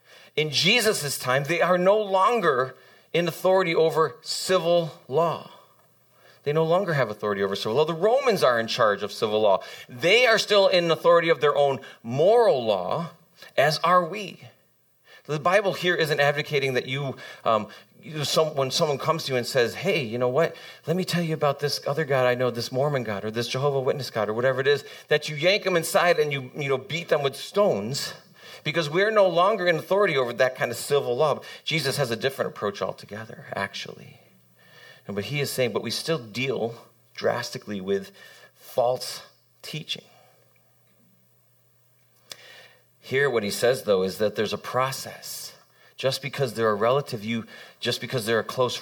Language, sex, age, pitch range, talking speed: English, male, 40-59, 125-165 Hz, 185 wpm